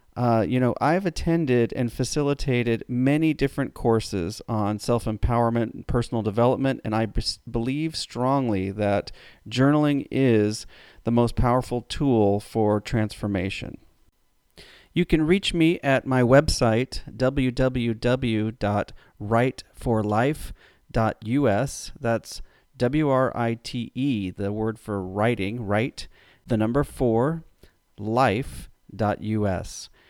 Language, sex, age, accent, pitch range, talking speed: English, male, 40-59, American, 110-130 Hz, 105 wpm